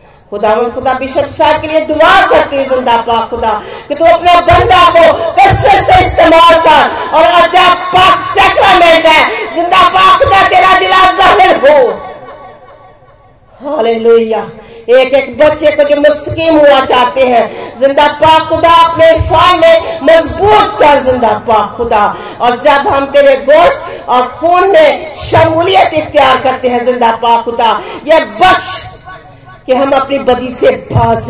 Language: Hindi